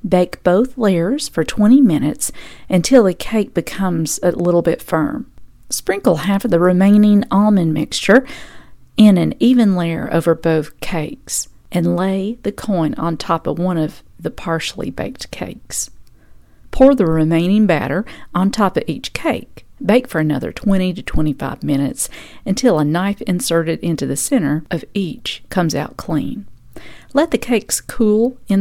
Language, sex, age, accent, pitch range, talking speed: English, female, 40-59, American, 165-220 Hz, 155 wpm